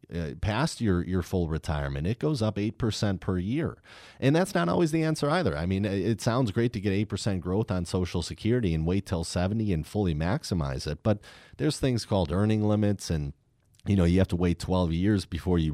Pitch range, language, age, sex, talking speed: 85-110 Hz, English, 30-49, male, 215 wpm